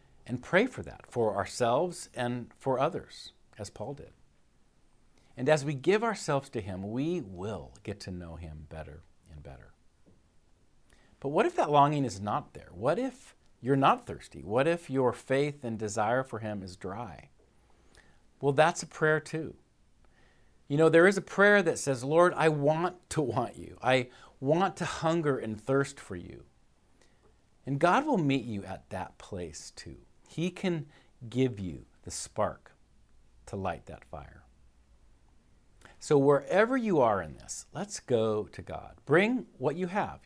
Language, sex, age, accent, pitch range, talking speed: English, male, 50-69, American, 105-160 Hz, 165 wpm